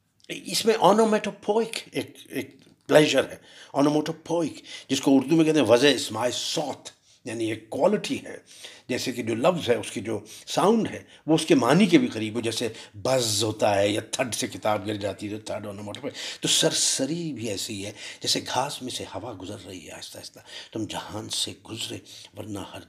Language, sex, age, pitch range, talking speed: Urdu, male, 60-79, 115-195 Hz, 195 wpm